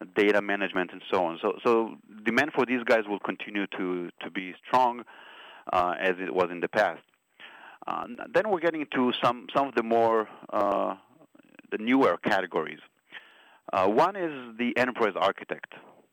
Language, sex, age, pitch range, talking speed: English, male, 30-49, 90-115 Hz, 165 wpm